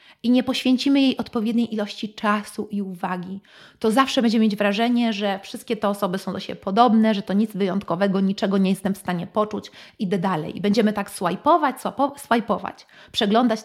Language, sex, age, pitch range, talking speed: Polish, female, 30-49, 210-260 Hz, 170 wpm